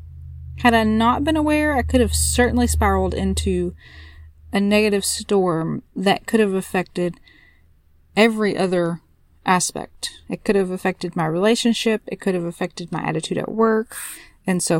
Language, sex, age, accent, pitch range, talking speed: English, female, 30-49, American, 185-245 Hz, 150 wpm